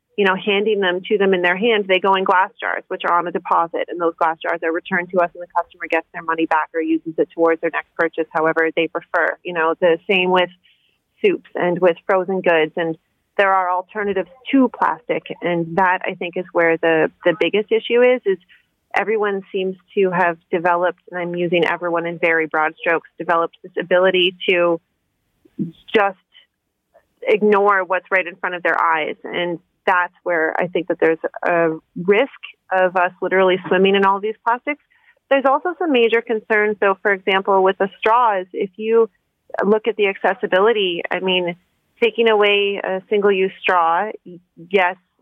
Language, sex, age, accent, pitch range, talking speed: English, female, 30-49, American, 175-200 Hz, 185 wpm